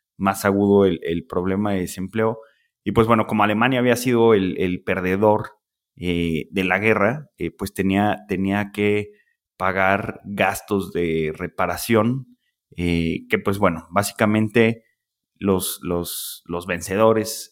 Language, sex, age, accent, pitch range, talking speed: Spanish, male, 30-49, Mexican, 90-115 Hz, 130 wpm